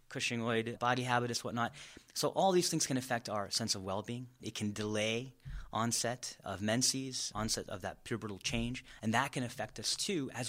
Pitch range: 105-125 Hz